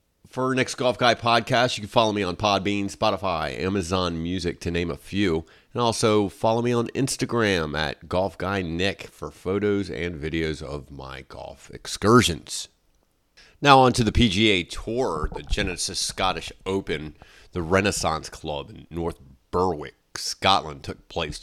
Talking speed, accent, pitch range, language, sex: 155 wpm, American, 80-115 Hz, English, male